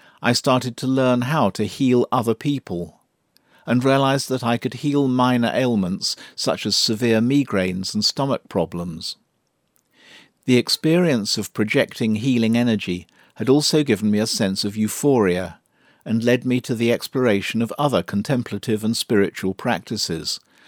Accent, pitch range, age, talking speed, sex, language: British, 105-125 Hz, 50-69, 145 wpm, male, English